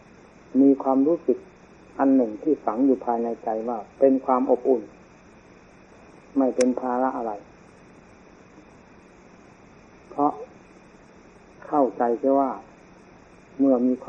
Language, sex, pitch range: Thai, male, 120-130 Hz